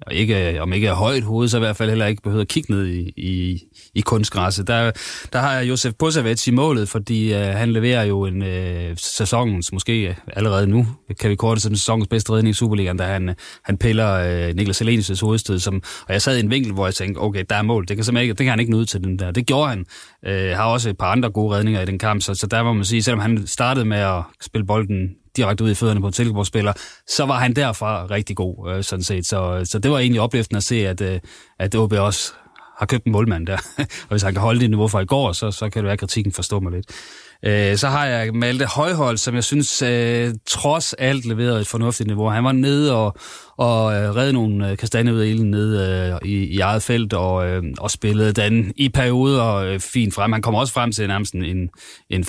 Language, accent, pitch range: Danish, native, 95-115 Hz